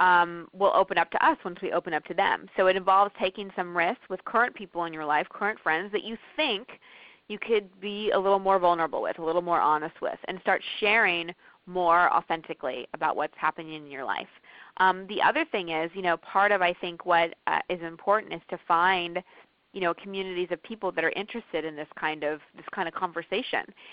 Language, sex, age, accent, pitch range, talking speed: English, female, 20-39, American, 165-200 Hz, 220 wpm